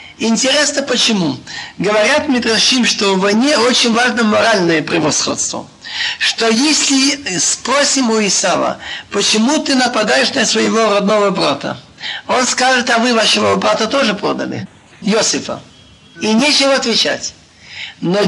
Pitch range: 205-270 Hz